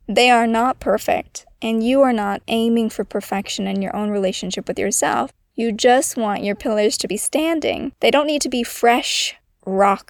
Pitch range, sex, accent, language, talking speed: 200-240 Hz, female, American, English, 190 wpm